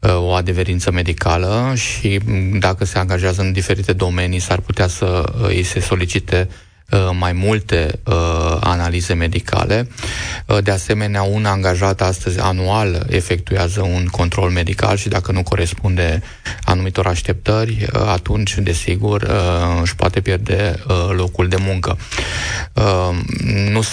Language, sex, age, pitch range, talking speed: Romanian, male, 20-39, 90-105 Hz, 125 wpm